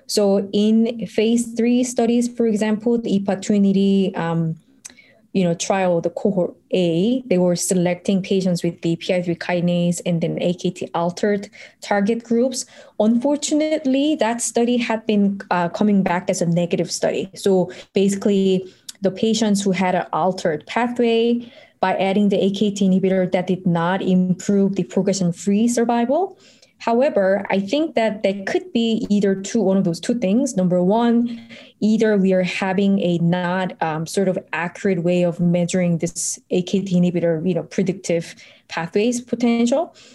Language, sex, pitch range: English, female, 180-225 Hz